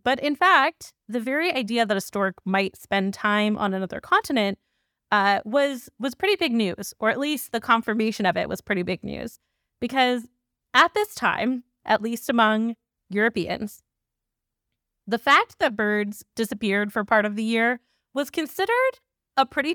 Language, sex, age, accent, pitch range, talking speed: English, female, 20-39, American, 200-270 Hz, 165 wpm